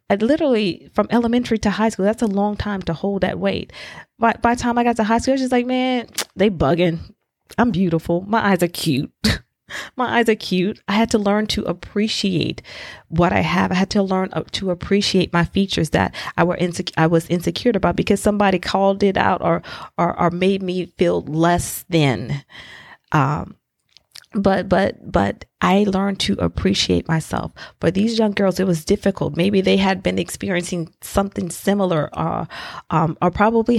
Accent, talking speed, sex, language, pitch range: American, 190 wpm, female, English, 160-205 Hz